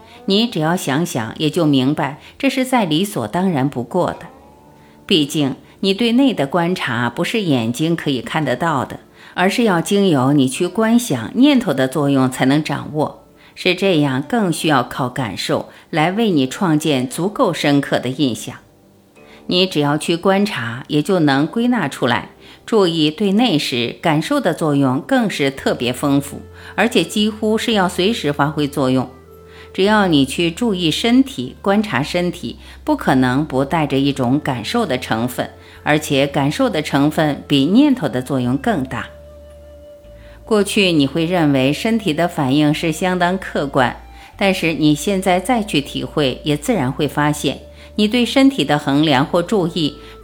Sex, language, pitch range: female, Chinese, 130-185 Hz